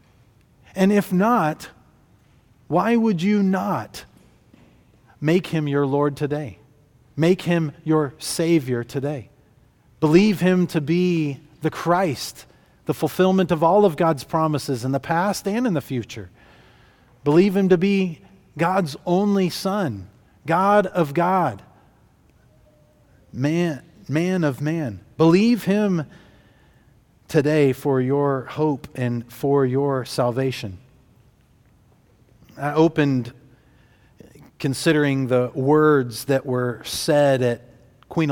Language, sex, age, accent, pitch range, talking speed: English, male, 40-59, American, 125-170 Hz, 110 wpm